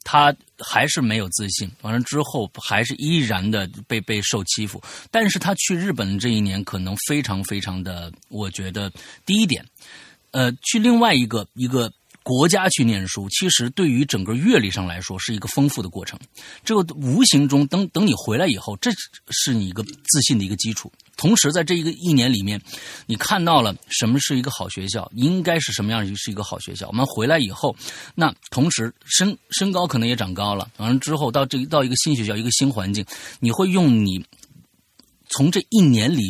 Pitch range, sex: 100-145 Hz, male